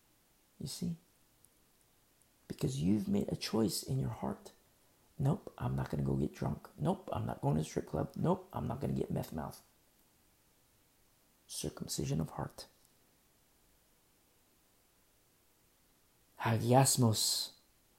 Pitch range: 125-180 Hz